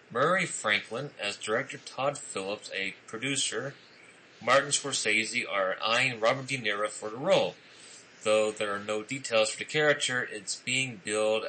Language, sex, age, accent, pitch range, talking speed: English, male, 30-49, American, 100-135 Hz, 150 wpm